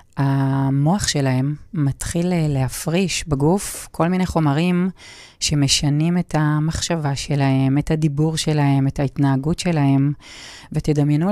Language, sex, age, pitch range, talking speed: Hebrew, female, 30-49, 140-165 Hz, 100 wpm